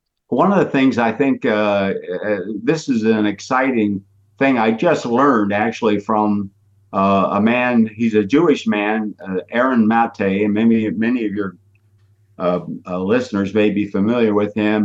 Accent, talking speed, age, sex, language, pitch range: American, 160 wpm, 50-69, male, English, 100-120 Hz